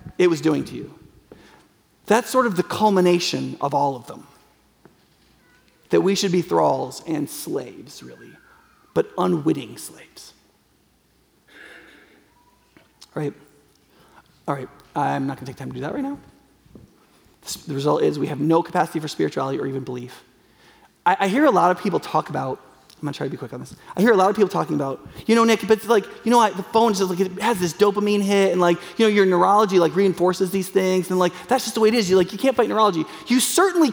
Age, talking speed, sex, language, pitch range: 30-49, 210 wpm, male, English, 185-255 Hz